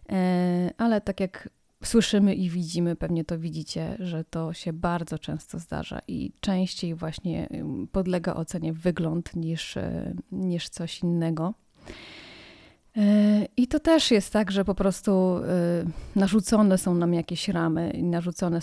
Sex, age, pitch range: female, 30-49, 170-200 Hz